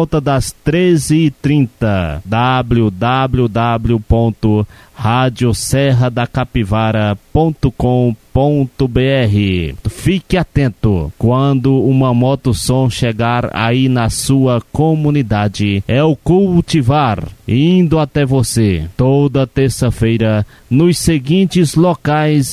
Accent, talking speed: Brazilian, 75 wpm